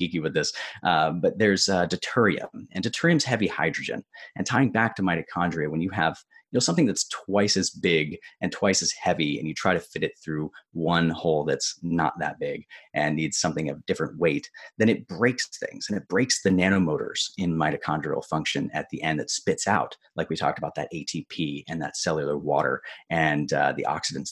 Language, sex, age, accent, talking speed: English, male, 30-49, American, 200 wpm